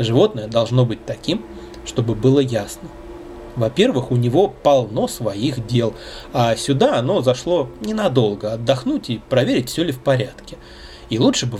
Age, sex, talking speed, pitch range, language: 20-39, male, 145 wpm, 115-140 Hz, Russian